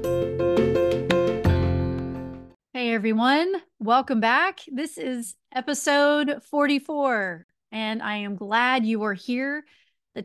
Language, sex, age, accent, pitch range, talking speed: English, female, 30-49, American, 195-245 Hz, 95 wpm